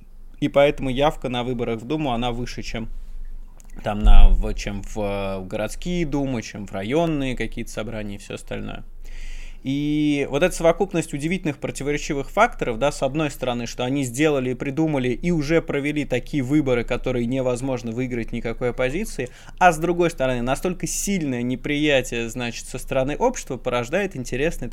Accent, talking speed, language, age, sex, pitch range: native, 150 wpm, Russian, 20-39, male, 120-150 Hz